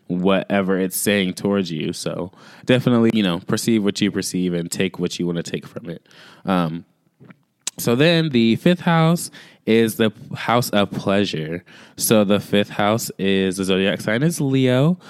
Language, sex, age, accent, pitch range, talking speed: English, male, 20-39, American, 95-120 Hz, 170 wpm